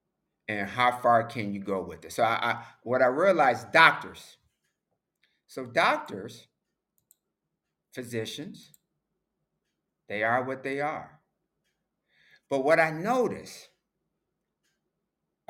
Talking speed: 95 wpm